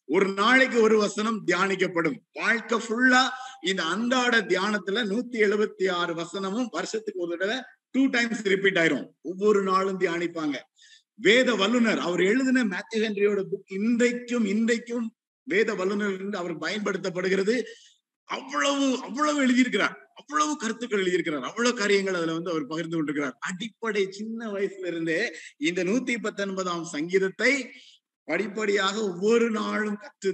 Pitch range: 190-245 Hz